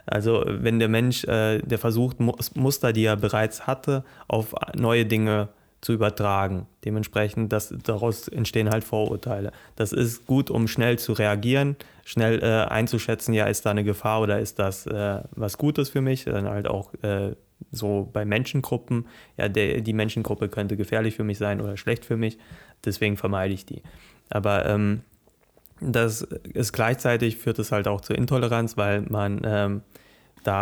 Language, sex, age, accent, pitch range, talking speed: German, male, 30-49, German, 105-115 Hz, 155 wpm